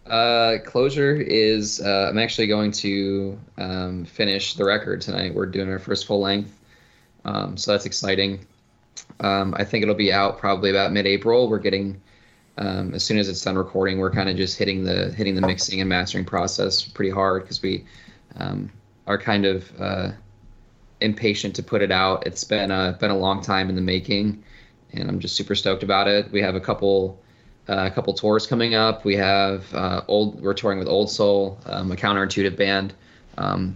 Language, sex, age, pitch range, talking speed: English, male, 20-39, 95-105 Hz, 190 wpm